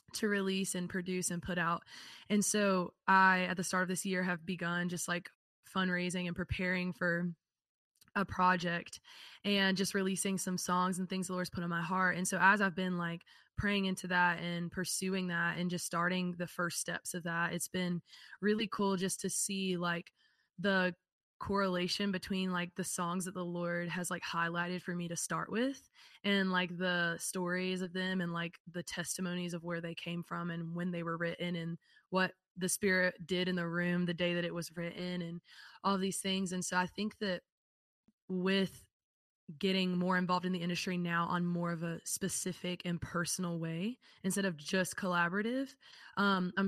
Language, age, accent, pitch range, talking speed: English, 20-39, American, 175-190 Hz, 190 wpm